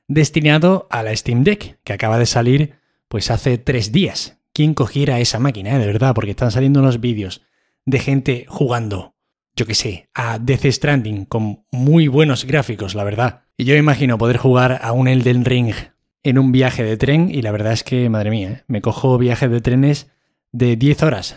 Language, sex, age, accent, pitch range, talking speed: Spanish, male, 20-39, Spanish, 115-145 Hz, 195 wpm